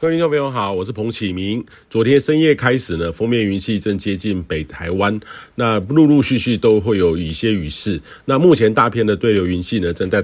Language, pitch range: Chinese, 95-120 Hz